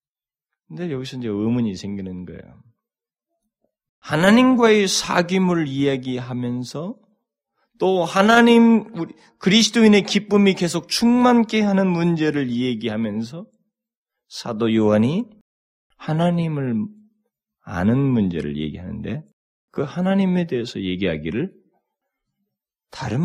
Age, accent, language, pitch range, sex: 40-59, native, Korean, 120-195 Hz, male